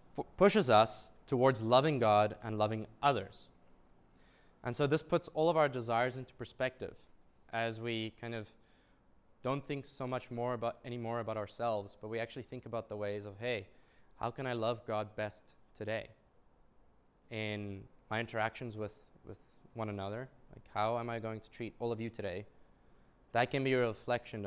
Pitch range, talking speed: 105-125 Hz, 165 wpm